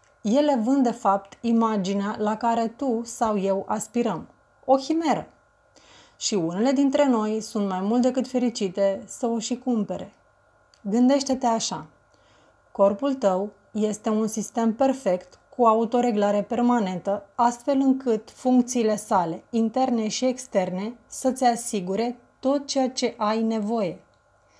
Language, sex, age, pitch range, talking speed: Romanian, female, 30-49, 210-255 Hz, 125 wpm